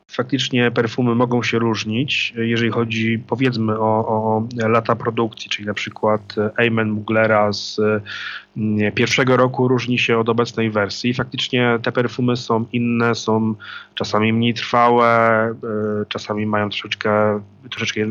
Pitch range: 110-125 Hz